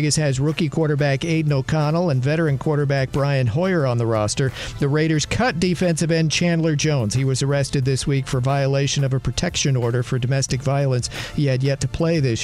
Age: 50-69